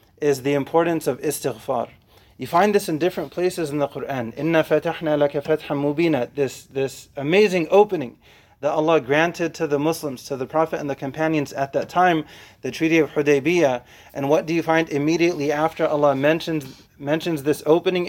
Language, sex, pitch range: English, male, 140-165 Hz